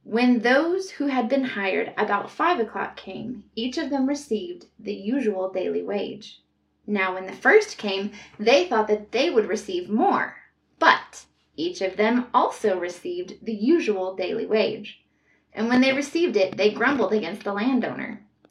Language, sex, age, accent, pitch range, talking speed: English, female, 20-39, American, 200-255 Hz, 160 wpm